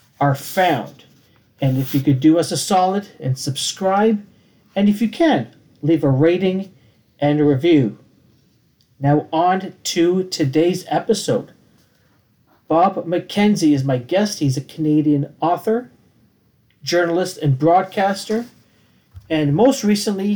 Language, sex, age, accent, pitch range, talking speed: English, male, 40-59, American, 135-180 Hz, 125 wpm